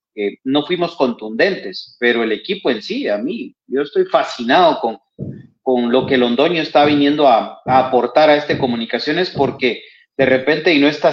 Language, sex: Spanish, male